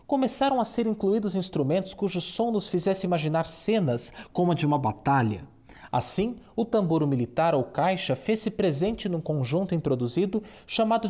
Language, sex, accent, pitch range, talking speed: Portuguese, male, Brazilian, 145-220 Hz, 150 wpm